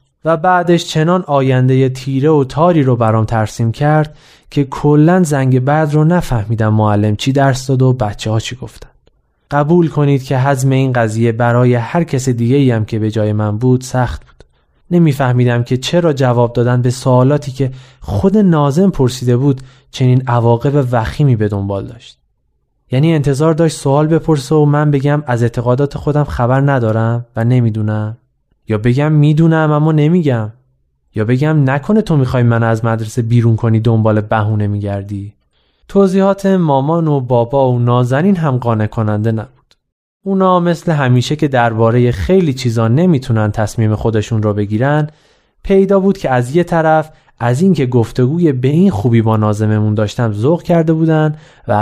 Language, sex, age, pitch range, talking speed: Persian, male, 20-39, 115-155 Hz, 155 wpm